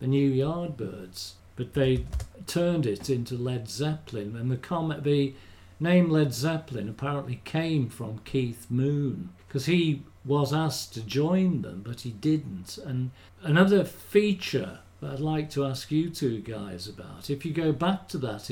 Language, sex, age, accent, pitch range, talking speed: English, male, 50-69, British, 115-155 Hz, 160 wpm